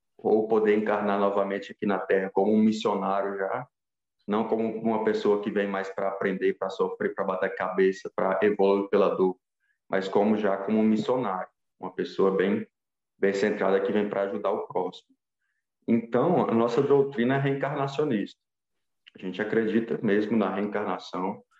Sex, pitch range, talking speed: male, 100-115 Hz, 160 wpm